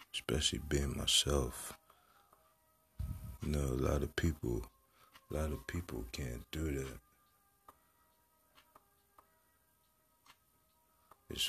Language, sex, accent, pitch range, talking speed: English, male, American, 70-85 Hz, 90 wpm